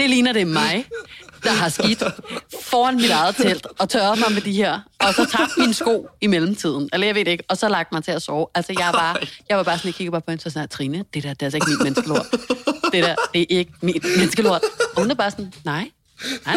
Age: 30-49